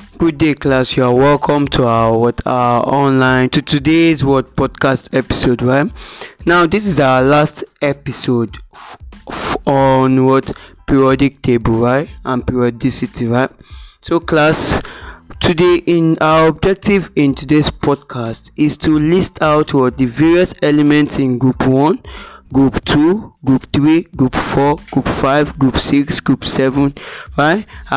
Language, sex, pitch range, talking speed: English, male, 135-160 Hz, 135 wpm